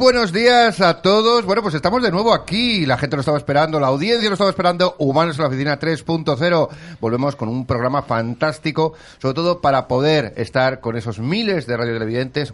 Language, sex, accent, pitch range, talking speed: Spanish, male, Spanish, 110-160 Hz, 190 wpm